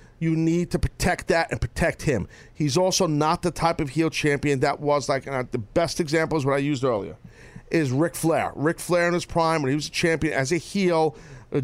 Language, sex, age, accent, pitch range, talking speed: English, male, 40-59, American, 145-195 Hz, 235 wpm